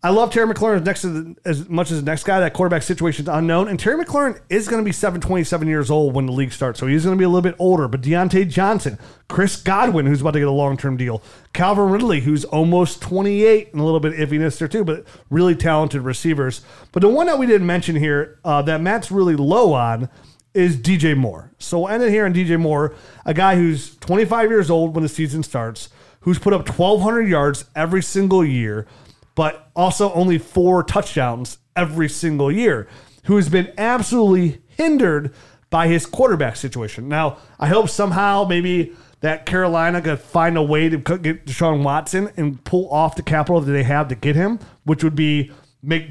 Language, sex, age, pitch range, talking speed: English, male, 30-49, 145-185 Hz, 205 wpm